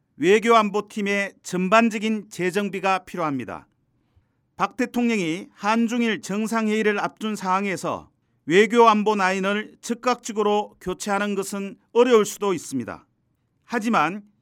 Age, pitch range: 40-59, 180-225 Hz